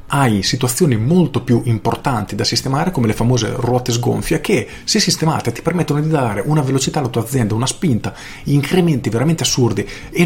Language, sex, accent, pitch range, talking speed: Italian, male, native, 115-155 Hz, 175 wpm